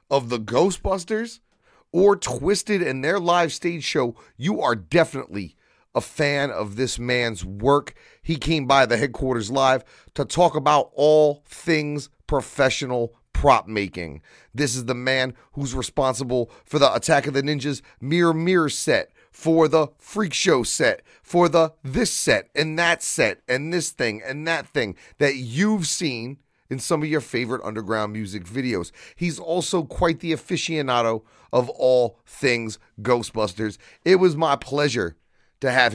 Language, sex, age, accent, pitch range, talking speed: English, male, 30-49, American, 115-160 Hz, 155 wpm